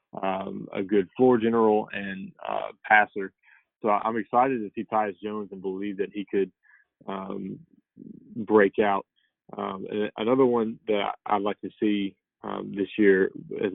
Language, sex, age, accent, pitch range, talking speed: English, male, 20-39, American, 95-105 Hz, 155 wpm